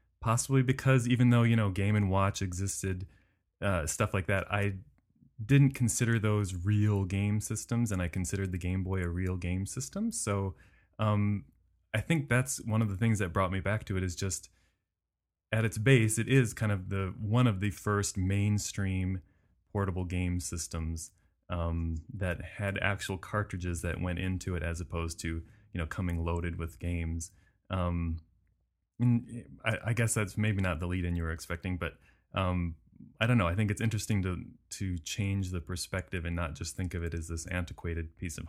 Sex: male